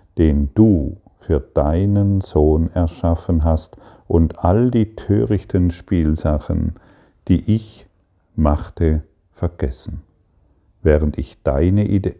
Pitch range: 80-95 Hz